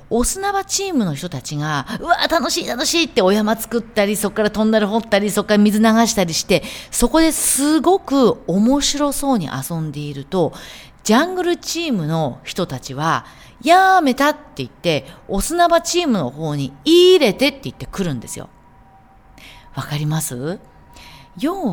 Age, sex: 40-59, female